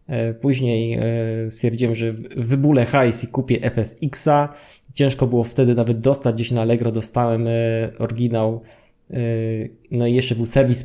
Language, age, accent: Polish, 20-39, native